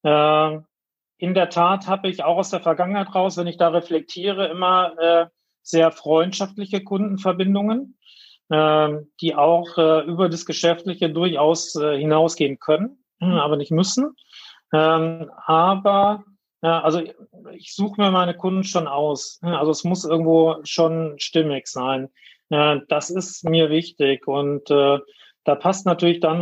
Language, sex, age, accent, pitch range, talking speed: German, male, 40-59, German, 155-185 Hz, 125 wpm